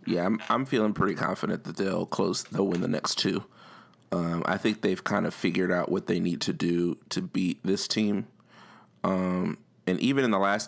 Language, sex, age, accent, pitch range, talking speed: English, male, 30-49, American, 90-110 Hz, 210 wpm